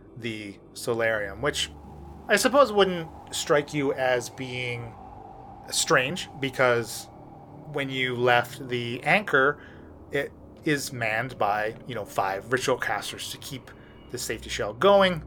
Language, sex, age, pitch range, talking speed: English, male, 30-49, 110-135 Hz, 125 wpm